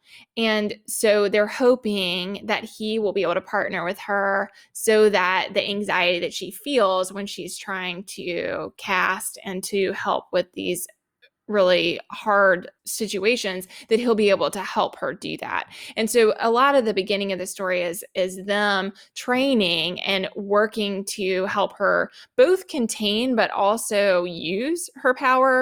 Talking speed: 160 wpm